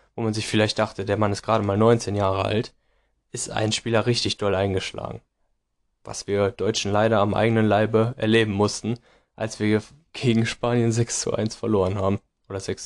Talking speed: 180 wpm